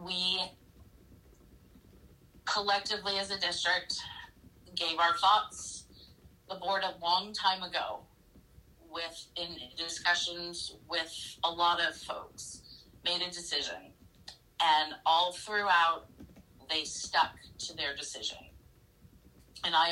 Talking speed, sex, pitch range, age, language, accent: 105 wpm, female, 155-180 Hz, 30-49, English, American